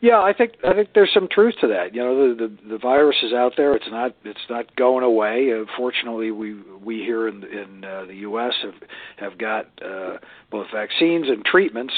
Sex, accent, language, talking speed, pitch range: male, American, English, 210 wpm, 115-150 Hz